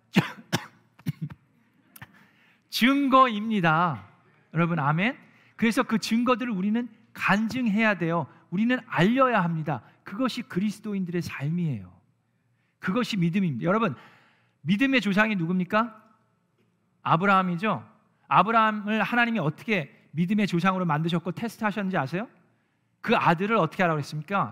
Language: Korean